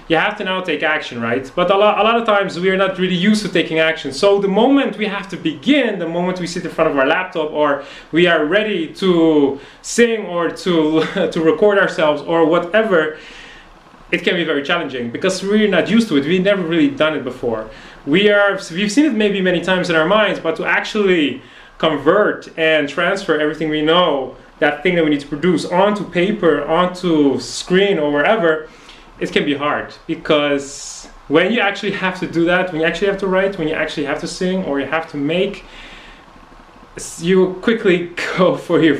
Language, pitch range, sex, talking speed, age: English, 155-195 Hz, male, 210 wpm, 30-49